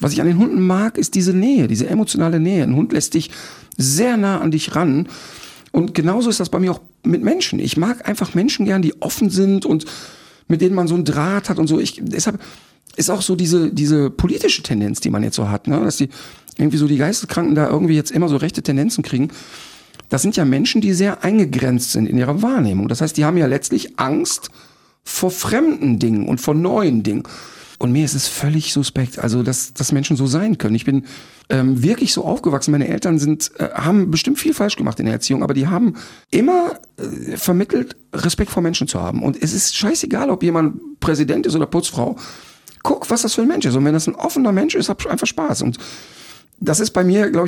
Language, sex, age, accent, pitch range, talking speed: German, male, 50-69, German, 150-200 Hz, 225 wpm